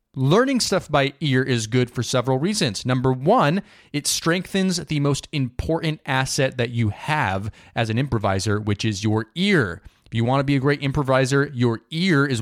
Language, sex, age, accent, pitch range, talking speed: English, male, 30-49, American, 110-145 Hz, 185 wpm